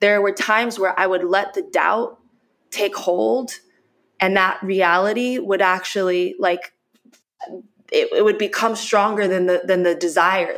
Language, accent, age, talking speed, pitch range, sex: English, American, 20-39, 155 wpm, 180-230 Hz, female